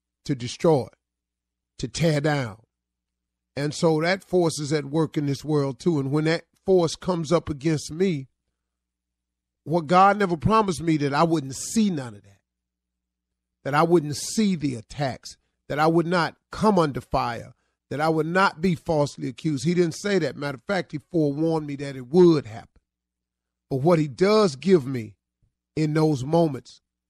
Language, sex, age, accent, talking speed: English, male, 40-59, American, 175 wpm